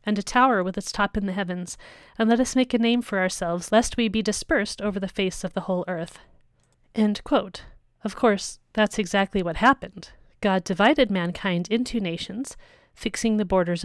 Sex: female